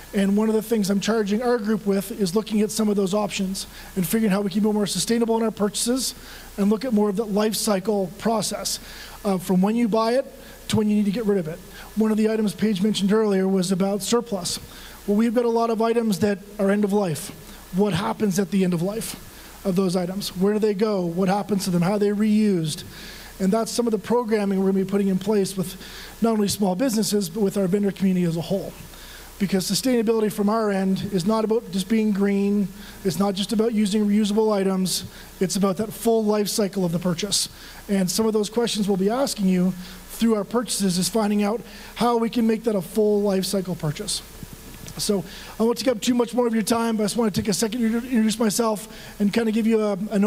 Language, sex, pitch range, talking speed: English, male, 195-225 Hz, 240 wpm